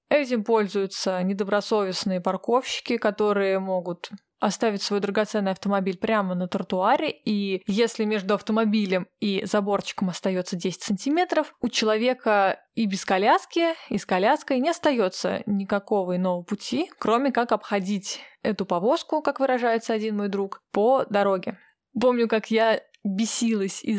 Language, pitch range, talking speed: Russian, 190-225 Hz, 130 wpm